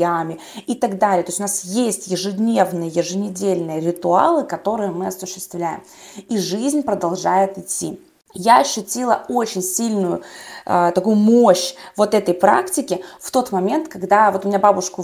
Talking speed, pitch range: 140 wpm, 185-235 Hz